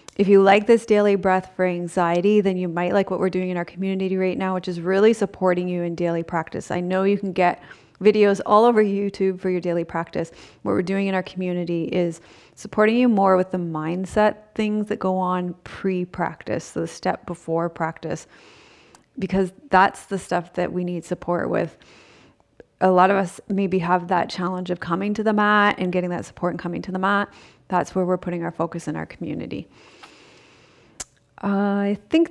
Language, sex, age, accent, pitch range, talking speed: English, female, 30-49, American, 180-200 Hz, 200 wpm